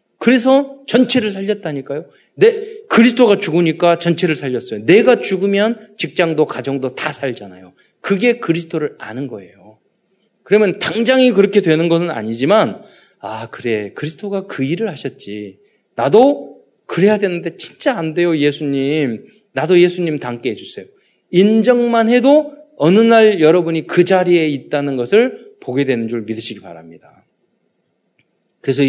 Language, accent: Korean, native